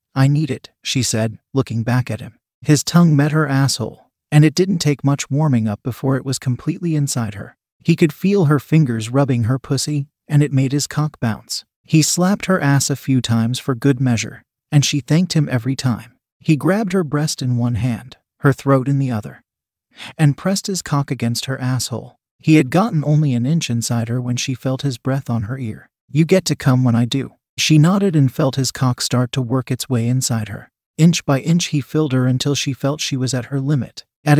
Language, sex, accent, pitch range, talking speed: English, male, American, 125-155 Hz, 220 wpm